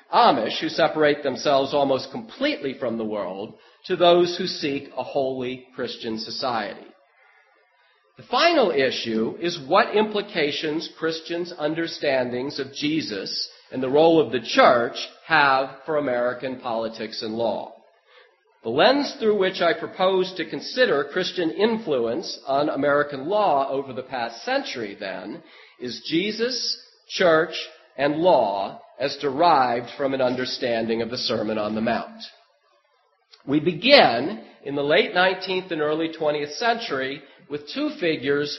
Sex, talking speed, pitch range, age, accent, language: male, 135 wpm, 130-180 Hz, 40-59, American, English